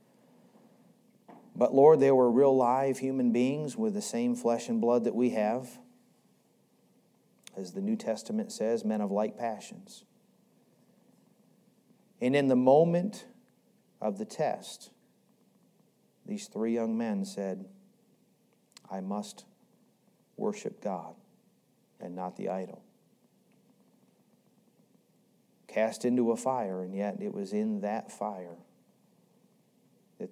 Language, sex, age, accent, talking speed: English, male, 50-69, American, 115 wpm